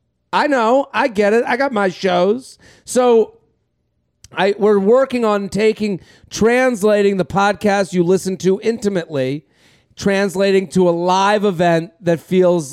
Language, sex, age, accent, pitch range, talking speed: English, male, 40-59, American, 155-200 Hz, 135 wpm